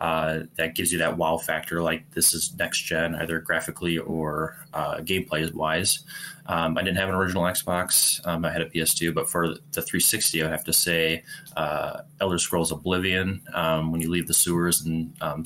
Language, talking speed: English, 185 wpm